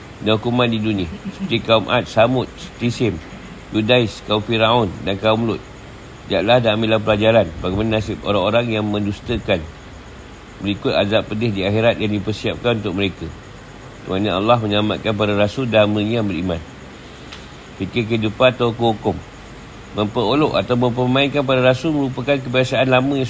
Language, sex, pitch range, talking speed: Malay, male, 105-125 Hz, 140 wpm